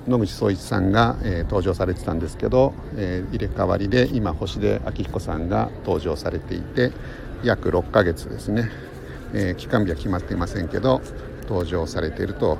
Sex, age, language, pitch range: male, 50-69, Japanese, 95-130 Hz